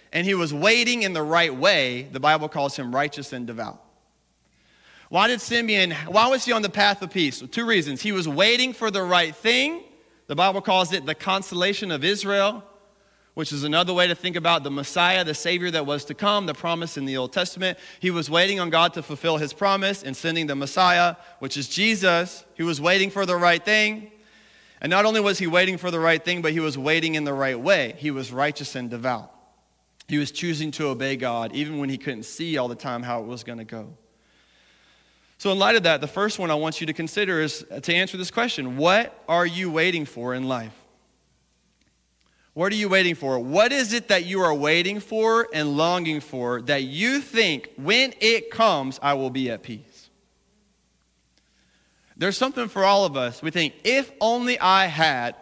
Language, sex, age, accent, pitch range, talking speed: English, male, 30-49, American, 140-200 Hz, 210 wpm